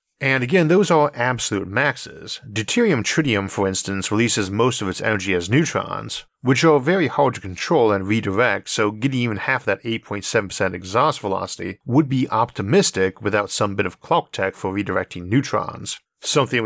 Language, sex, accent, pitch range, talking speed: English, male, American, 100-130 Hz, 165 wpm